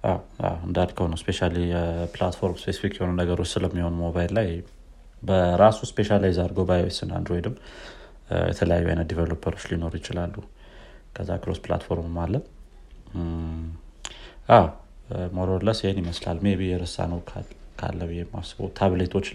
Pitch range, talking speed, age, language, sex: 85-100 Hz, 110 wpm, 30-49, Amharic, male